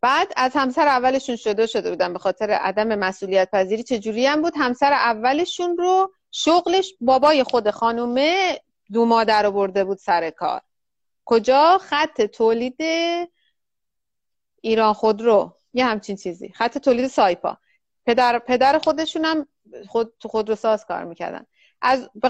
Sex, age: female, 30-49